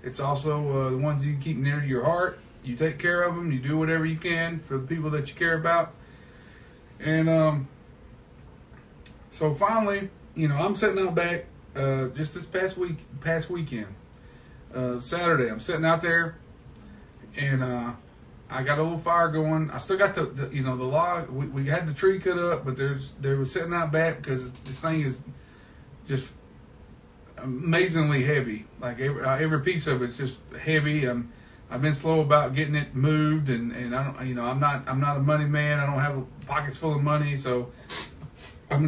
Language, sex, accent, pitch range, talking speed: English, male, American, 130-165 Hz, 200 wpm